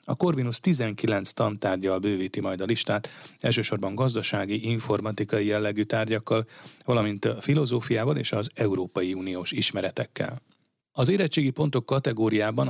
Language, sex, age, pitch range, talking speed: Hungarian, male, 30-49, 105-125 Hz, 115 wpm